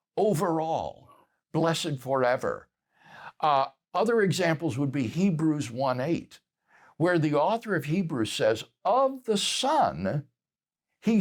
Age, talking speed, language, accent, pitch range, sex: 60-79, 105 wpm, English, American, 155-220 Hz, male